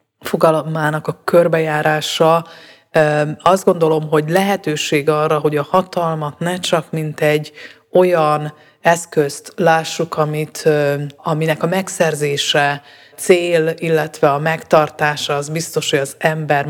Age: 30-49